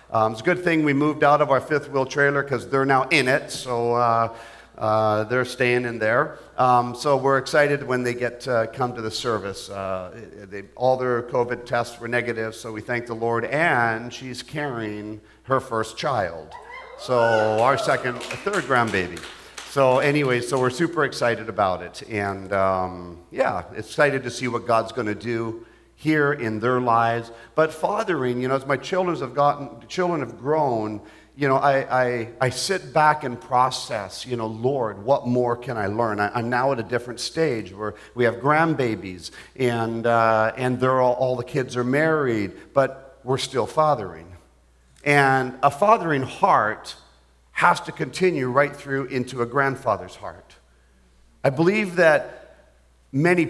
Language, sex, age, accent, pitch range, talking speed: English, male, 50-69, American, 110-140 Hz, 170 wpm